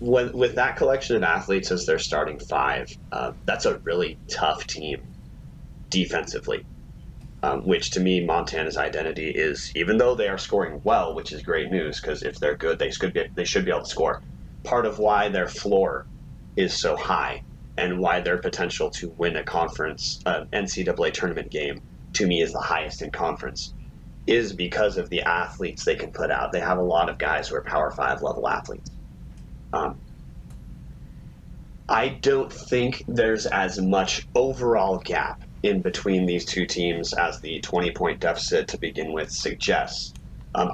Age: 30-49